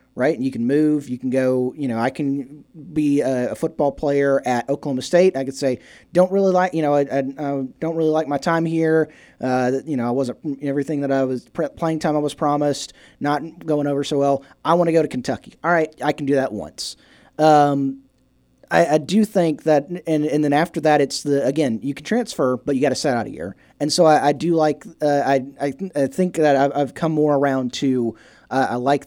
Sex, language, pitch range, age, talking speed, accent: male, English, 135-160 Hz, 20-39, 235 wpm, American